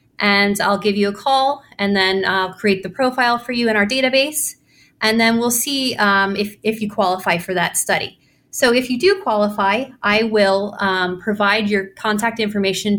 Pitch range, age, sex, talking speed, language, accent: 195-235 Hz, 30-49, female, 190 wpm, English, American